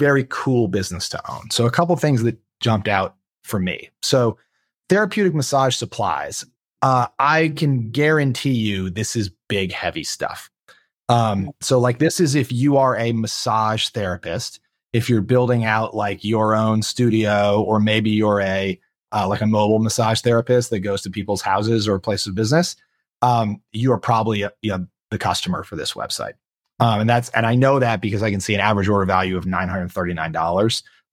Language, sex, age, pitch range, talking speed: English, male, 30-49, 100-125 Hz, 185 wpm